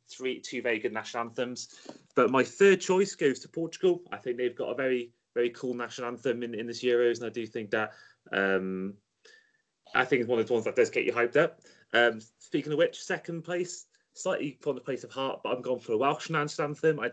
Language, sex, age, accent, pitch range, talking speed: English, male, 30-49, British, 115-175 Hz, 235 wpm